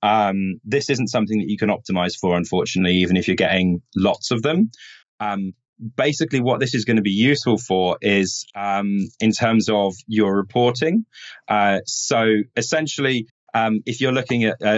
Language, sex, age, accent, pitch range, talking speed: English, male, 20-39, British, 95-110 Hz, 175 wpm